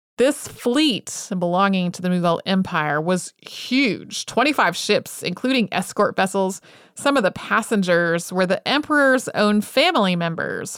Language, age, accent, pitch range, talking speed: English, 30-49, American, 180-230 Hz, 135 wpm